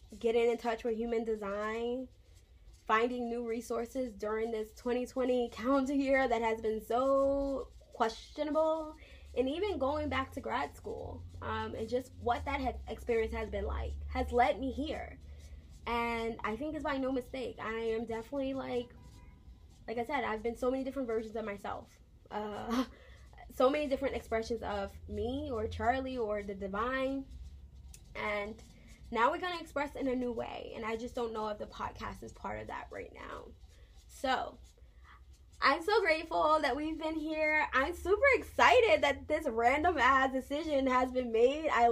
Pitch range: 225-270 Hz